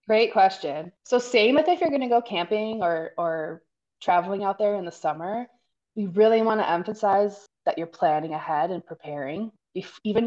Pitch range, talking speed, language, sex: 165-215 Hz, 185 wpm, English, female